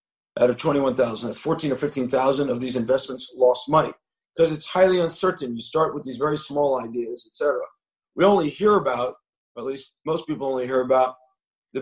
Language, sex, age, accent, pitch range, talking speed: English, male, 40-59, American, 130-170 Hz, 195 wpm